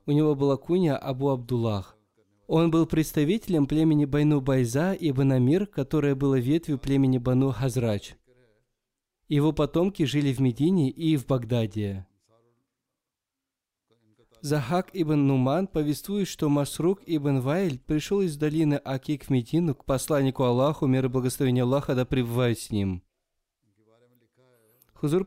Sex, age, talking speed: male, 20-39, 120 wpm